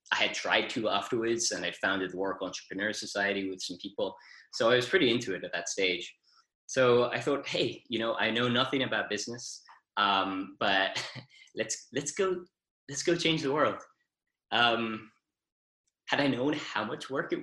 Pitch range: 95-120 Hz